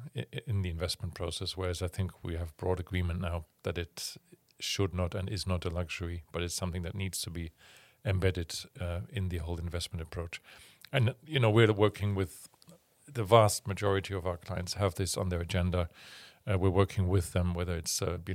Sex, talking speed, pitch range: male, 200 wpm, 90-100 Hz